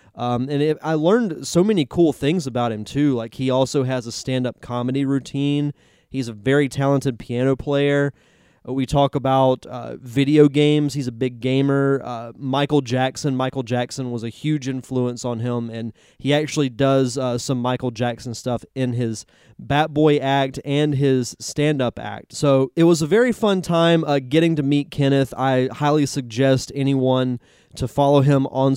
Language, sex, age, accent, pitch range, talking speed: English, male, 20-39, American, 120-145 Hz, 175 wpm